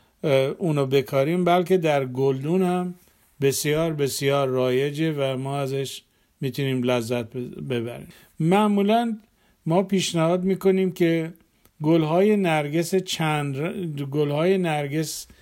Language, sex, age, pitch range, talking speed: Persian, male, 50-69, 140-180 Hz, 95 wpm